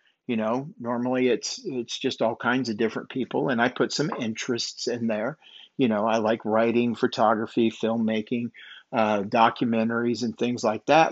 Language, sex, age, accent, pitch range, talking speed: English, male, 50-69, American, 110-130 Hz, 165 wpm